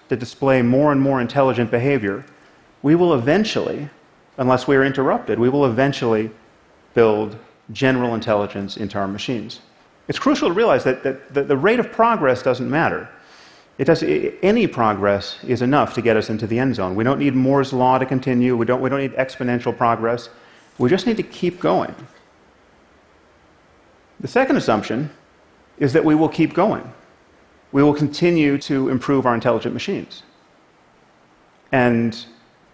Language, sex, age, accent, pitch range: Chinese, male, 40-59, American, 120-160 Hz